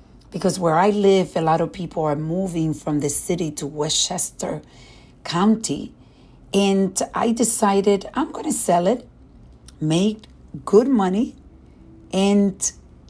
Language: English